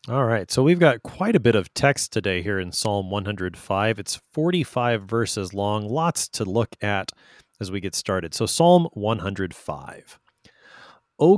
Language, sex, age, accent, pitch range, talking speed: English, male, 30-49, American, 105-135 Hz, 165 wpm